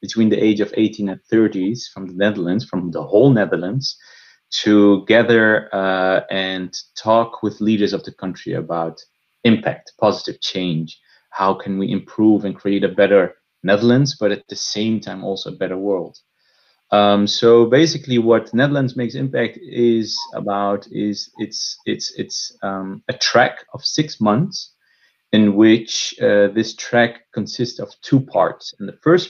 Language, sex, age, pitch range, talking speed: English, male, 30-49, 100-125 Hz, 160 wpm